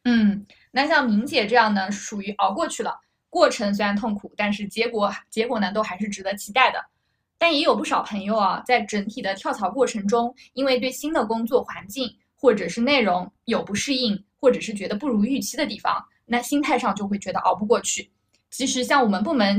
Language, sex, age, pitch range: Chinese, female, 20-39, 205-255 Hz